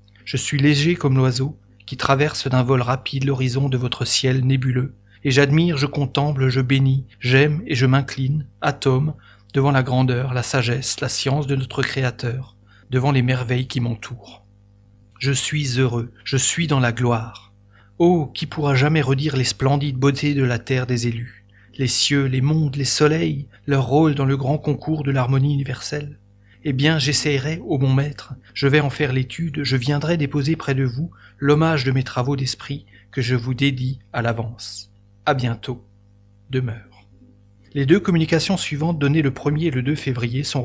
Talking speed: 180 wpm